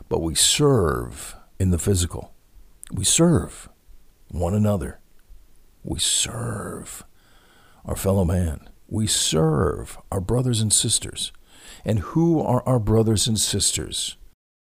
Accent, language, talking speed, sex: American, English, 115 wpm, male